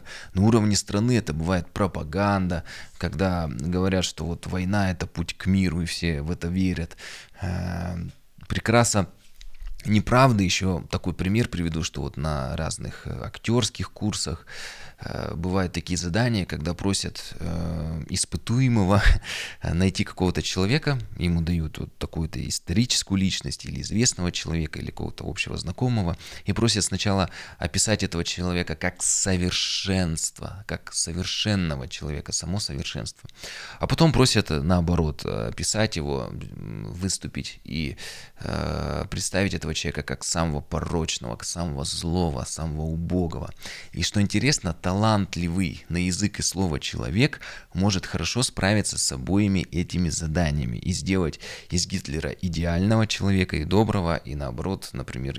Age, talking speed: 20-39, 125 wpm